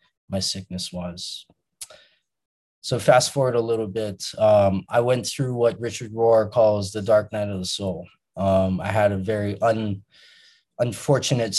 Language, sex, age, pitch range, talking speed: English, male, 20-39, 95-115 Hz, 155 wpm